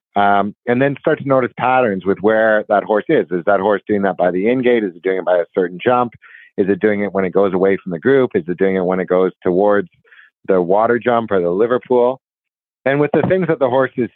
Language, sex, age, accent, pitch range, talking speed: English, male, 50-69, American, 100-130 Hz, 265 wpm